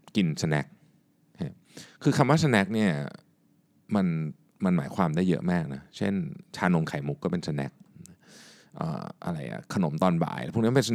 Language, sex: Thai, male